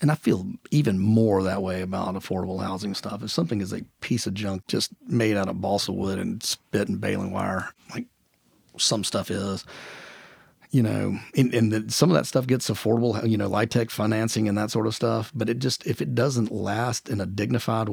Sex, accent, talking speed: male, American, 210 wpm